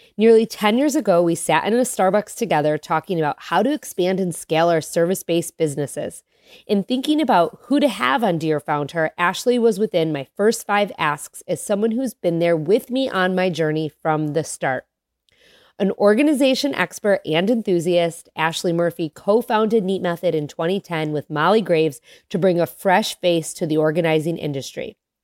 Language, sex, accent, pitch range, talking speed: English, female, American, 165-205 Hz, 175 wpm